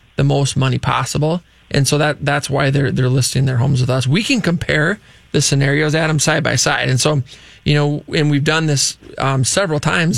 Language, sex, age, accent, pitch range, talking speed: English, male, 20-39, American, 135-155 Hz, 220 wpm